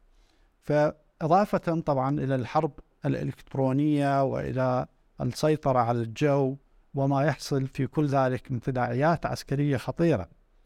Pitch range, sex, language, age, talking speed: 130-160 Hz, male, Arabic, 50-69, 100 wpm